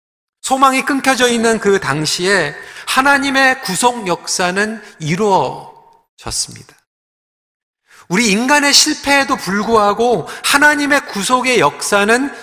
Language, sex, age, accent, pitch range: Korean, male, 40-59, native, 190-265 Hz